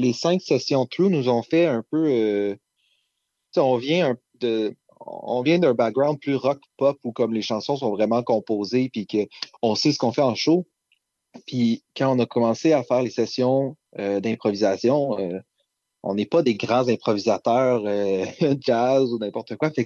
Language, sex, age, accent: French, male, 30-49, Canadian